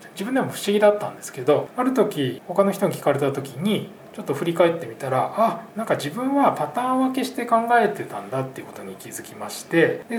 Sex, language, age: male, Japanese, 20-39